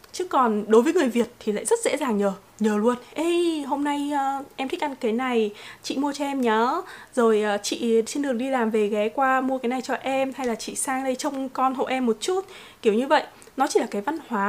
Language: Vietnamese